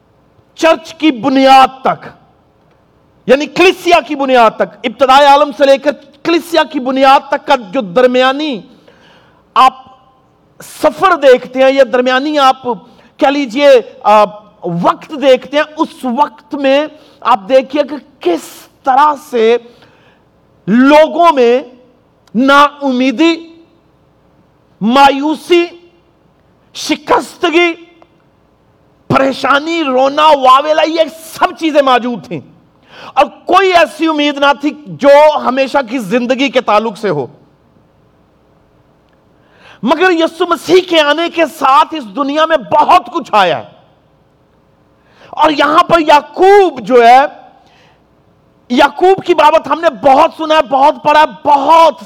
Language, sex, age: Urdu, male, 50-69